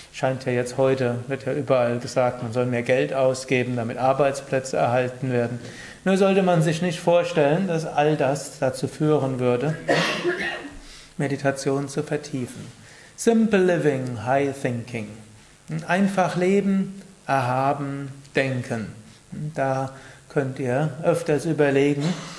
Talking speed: 120 wpm